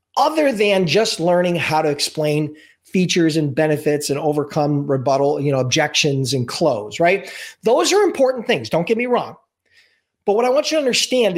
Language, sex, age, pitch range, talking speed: English, male, 40-59, 150-220 Hz, 180 wpm